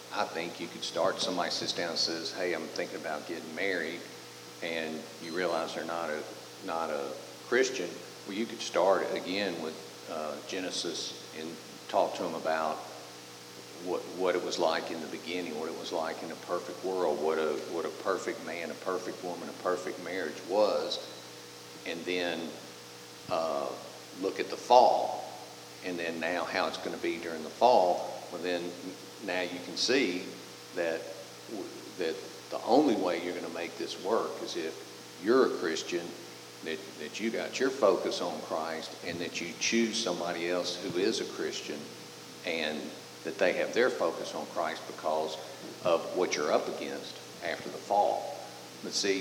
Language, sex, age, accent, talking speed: English, male, 50-69, American, 175 wpm